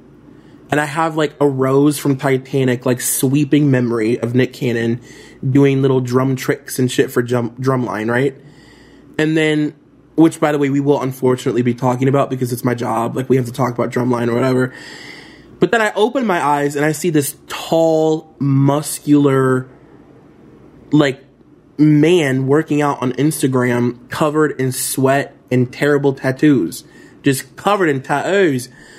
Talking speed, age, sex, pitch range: 160 wpm, 20-39, male, 130-160 Hz